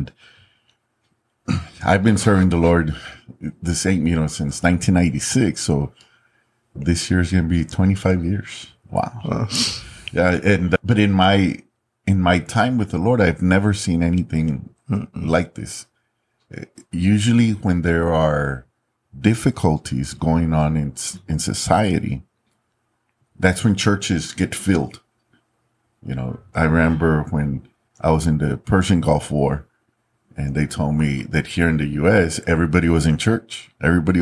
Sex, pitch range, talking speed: male, 80-105 Hz, 135 wpm